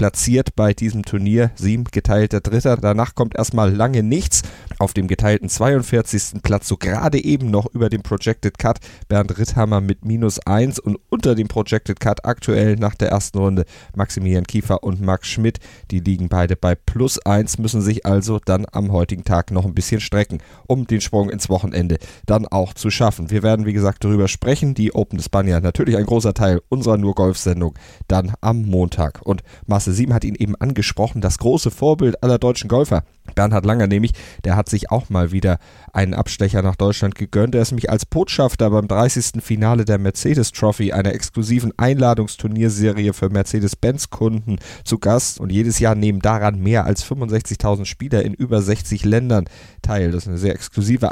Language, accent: German, German